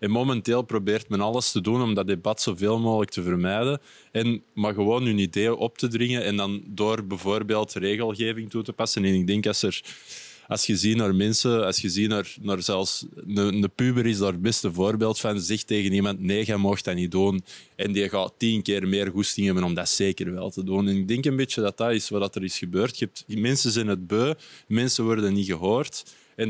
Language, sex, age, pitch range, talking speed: Dutch, male, 20-39, 95-110 Hz, 225 wpm